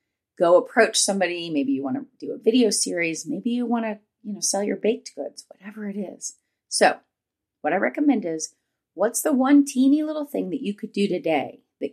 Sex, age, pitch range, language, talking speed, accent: female, 30-49, 170-240 Hz, English, 195 wpm, American